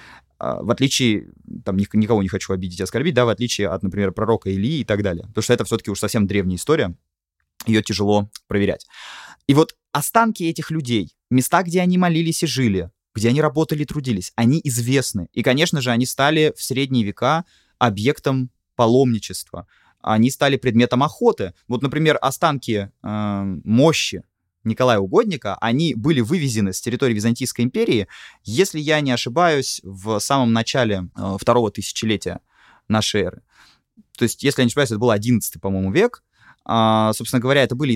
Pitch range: 105-140 Hz